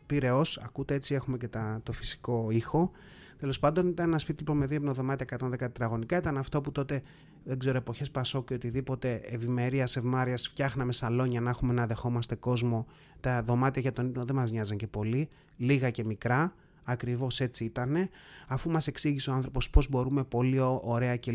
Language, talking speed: Greek, 180 wpm